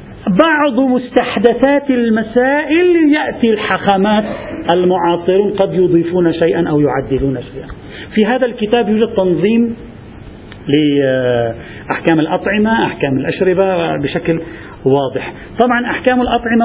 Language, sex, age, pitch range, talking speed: Arabic, male, 40-59, 145-215 Hz, 95 wpm